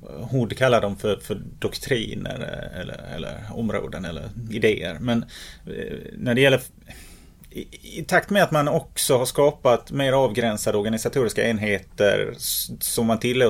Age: 30-49